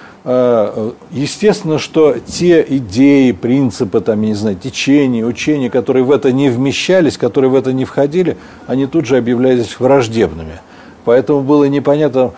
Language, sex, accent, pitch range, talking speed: Russian, male, native, 115-145 Hz, 120 wpm